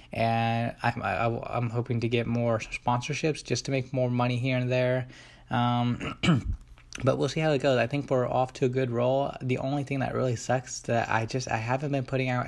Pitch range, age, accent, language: 115-130 Hz, 20-39, American, English